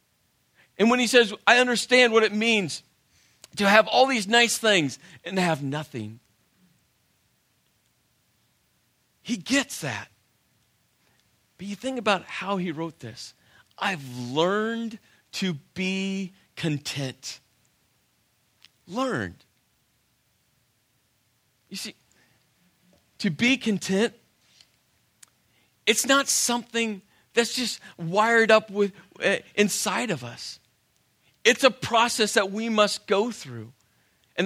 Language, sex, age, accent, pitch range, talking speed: English, male, 40-59, American, 140-215 Hz, 110 wpm